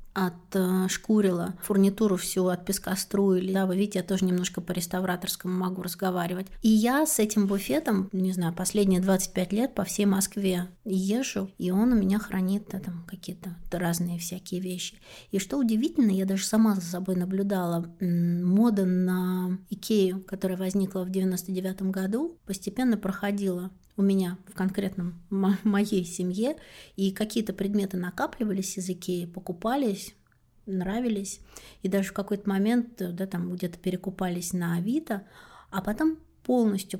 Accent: native